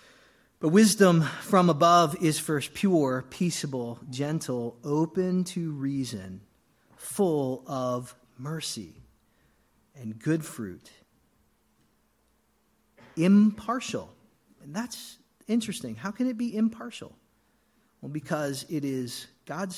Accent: American